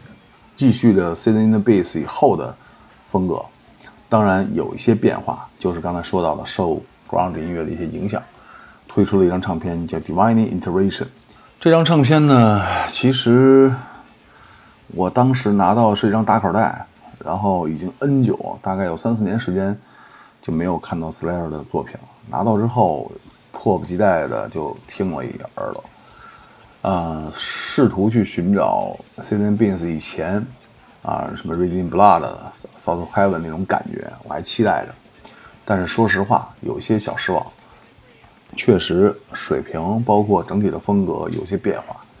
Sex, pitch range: male, 85-115 Hz